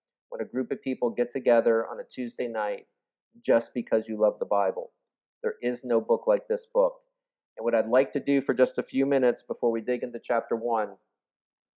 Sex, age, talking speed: male, 40-59, 210 wpm